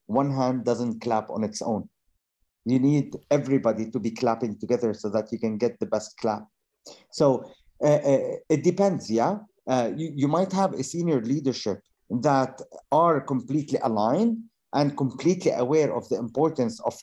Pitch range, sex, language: 120-150 Hz, male, English